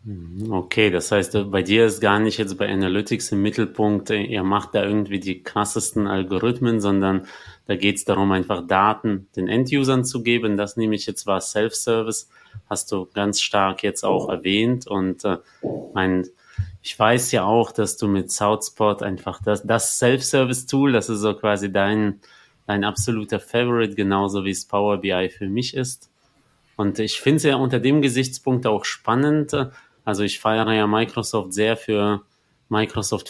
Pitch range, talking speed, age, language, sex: 100-115 Hz, 170 wpm, 30-49, German, male